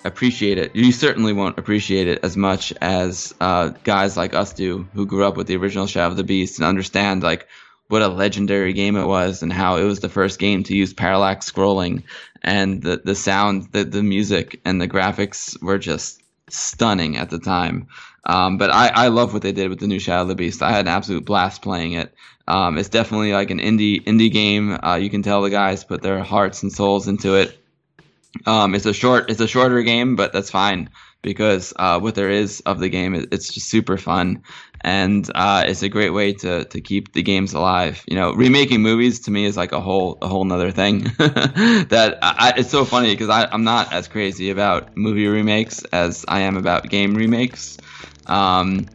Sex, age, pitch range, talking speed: male, 20-39, 95-105 Hz, 215 wpm